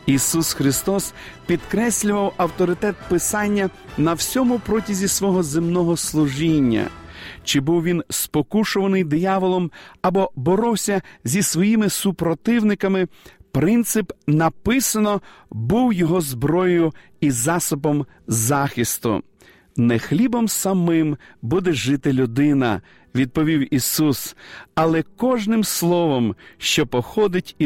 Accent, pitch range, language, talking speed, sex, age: native, 145-200 Hz, Ukrainian, 95 wpm, male, 40-59